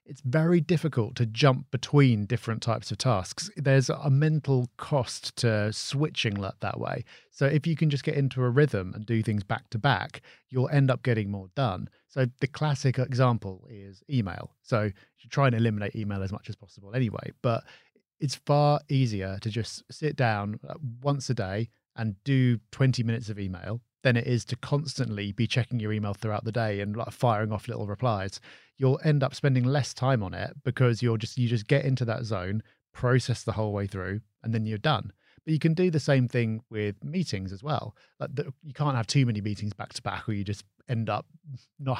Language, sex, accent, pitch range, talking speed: English, male, British, 110-135 Hz, 210 wpm